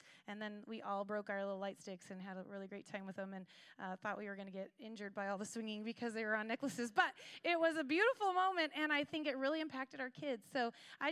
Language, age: English, 30-49